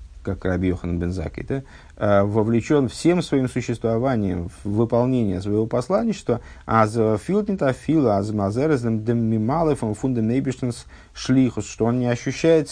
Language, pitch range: Russian, 95-130 Hz